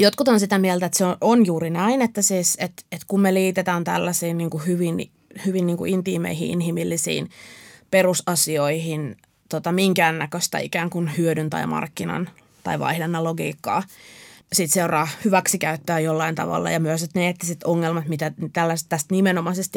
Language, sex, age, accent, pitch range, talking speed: Finnish, female, 20-39, native, 165-190 Hz, 150 wpm